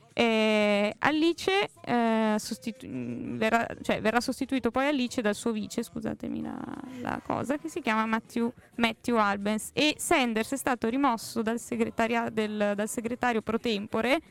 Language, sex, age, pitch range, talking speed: Italian, female, 20-39, 210-245 Hz, 140 wpm